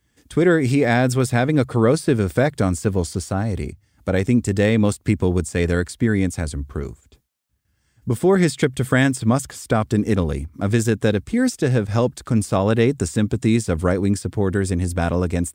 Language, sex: English, male